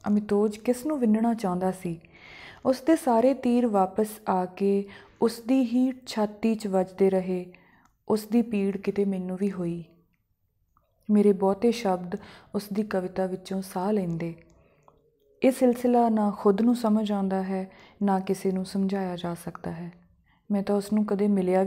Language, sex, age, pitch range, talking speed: Punjabi, female, 20-39, 185-220 Hz, 160 wpm